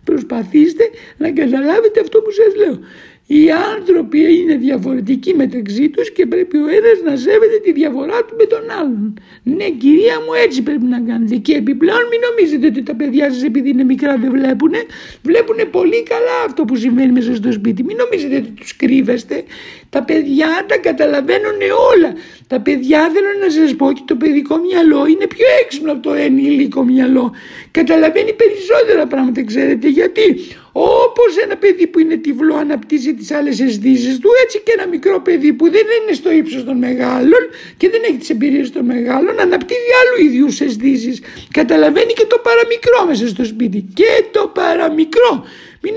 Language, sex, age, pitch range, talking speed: Greek, male, 60-79, 275-425 Hz, 170 wpm